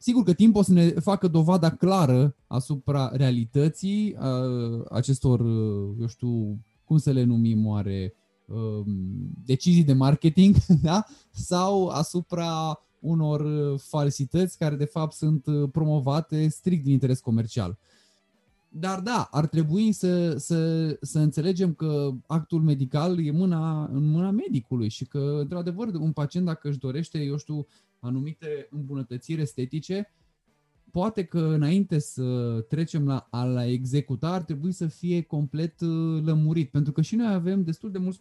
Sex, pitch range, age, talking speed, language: male, 135-175 Hz, 20-39, 130 wpm, Romanian